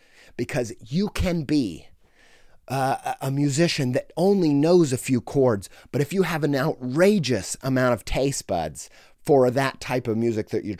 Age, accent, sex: 30-49, American, male